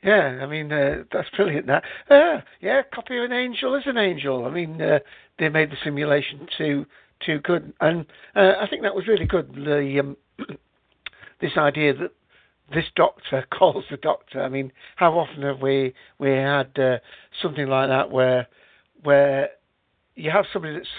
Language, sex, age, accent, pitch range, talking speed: English, male, 60-79, British, 140-185 Hz, 175 wpm